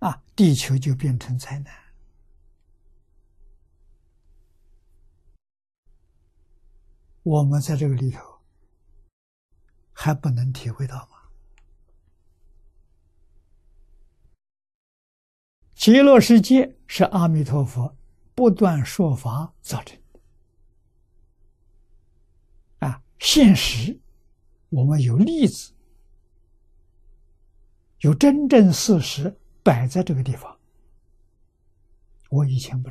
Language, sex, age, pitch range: Chinese, male, 60-79, 80-135 Hz